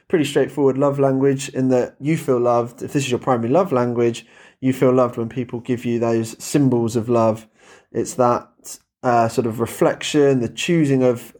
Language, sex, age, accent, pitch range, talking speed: English, male, 20-39, British, 120-135 Hz, 190 wpm